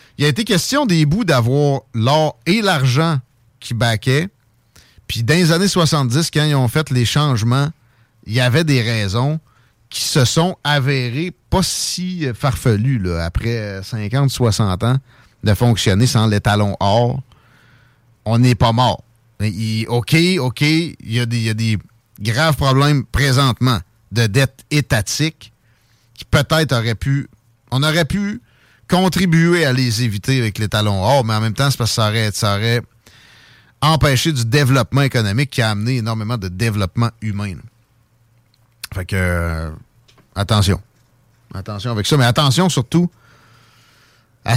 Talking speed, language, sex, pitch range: 155 wpm, French, male, 115-145 Hz